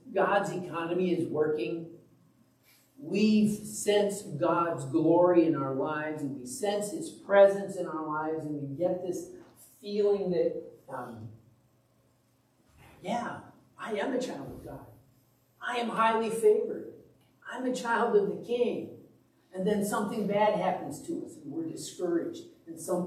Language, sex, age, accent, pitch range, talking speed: English, male, 50-69, American, 150-215 Hz, 145 wpm